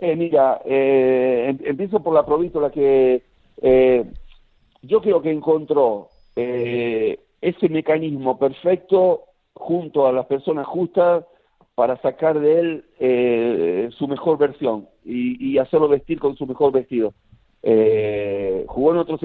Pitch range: 130-165 Hz